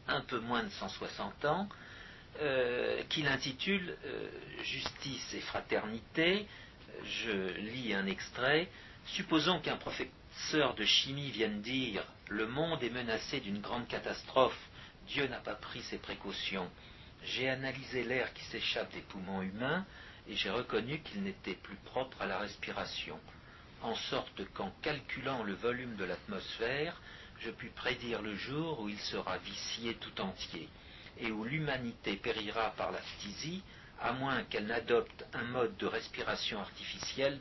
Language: French